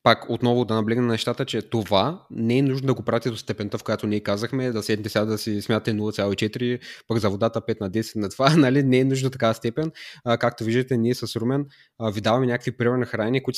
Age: 20-39